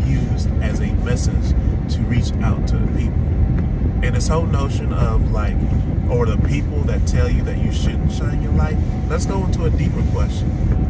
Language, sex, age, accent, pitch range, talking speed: English, male, 30-49, American, 75-100 Hz, 185 wpm